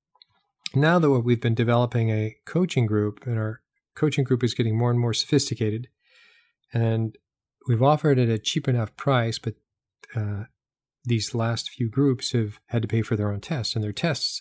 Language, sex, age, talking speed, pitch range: English, male, 40-59, 185 wpm, 110-130 Hz